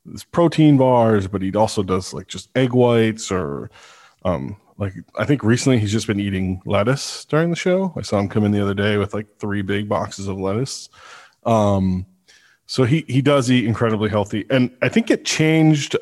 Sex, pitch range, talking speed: male, 100-125 Hz, 195 wpm